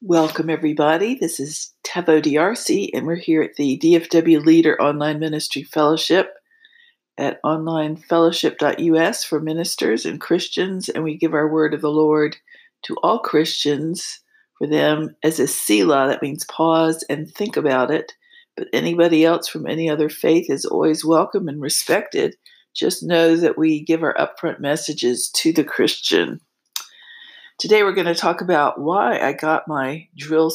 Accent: American